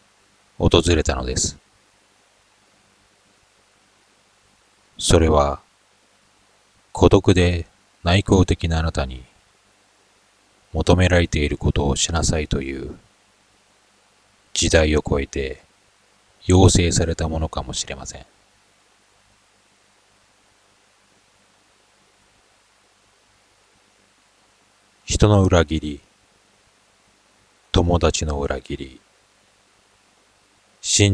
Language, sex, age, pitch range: Japanese, male, 40-59, 80-105 Hz